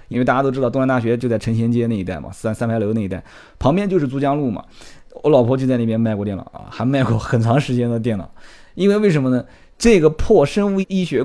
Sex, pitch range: male, 110-170 Hz